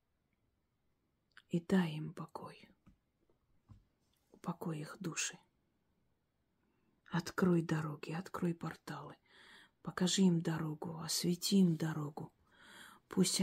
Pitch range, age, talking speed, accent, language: 160-175 Hz, 40-59, 80 wpm, native, Russian